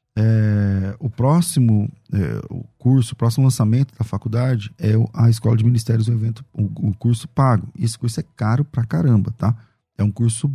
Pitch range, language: 115-150 Hz, Portuguese